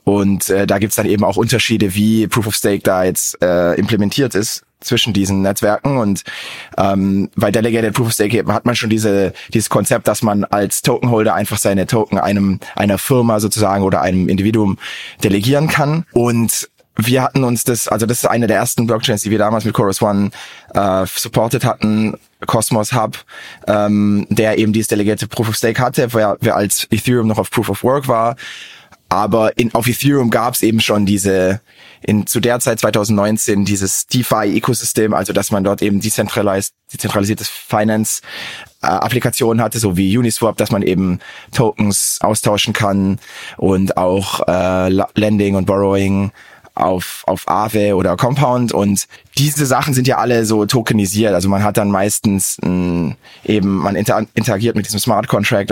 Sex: male